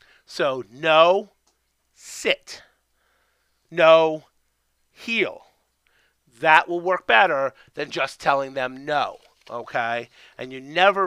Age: 30-49